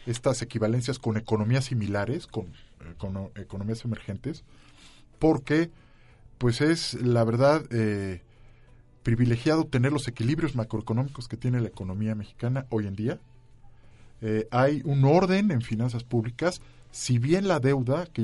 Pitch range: 110-135 Hz